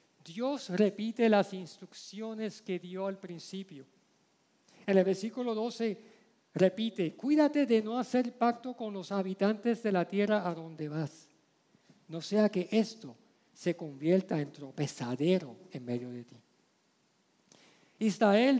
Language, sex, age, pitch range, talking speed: Spanish, male, 50-69, 170-225 Hz, 130 wpm